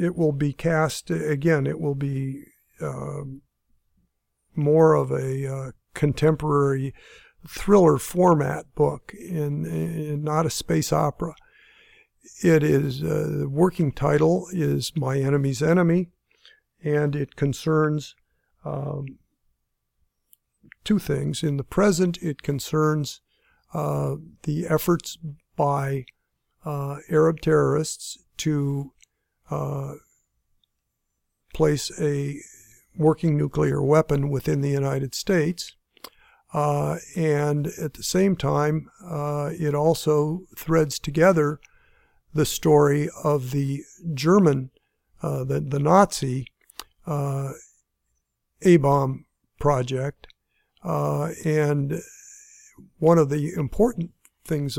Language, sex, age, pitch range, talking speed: English, male, 50-69, 140-165 Hz, 95 wpm